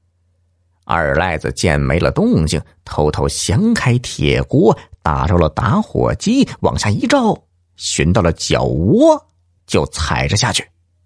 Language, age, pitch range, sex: Chinese, 50-69, 85-140 Hz, male